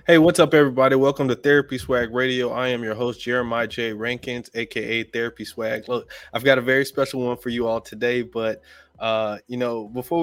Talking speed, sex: 205 wpm, male